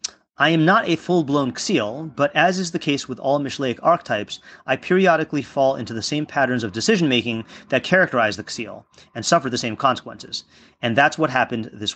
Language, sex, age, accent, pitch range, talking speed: English, male, 40-59, American, 125-160 Hz, 190 wpm